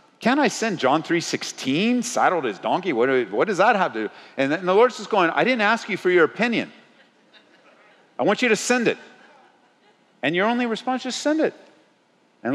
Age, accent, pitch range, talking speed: 50-69, American, 180-255 Hz, 215 wpm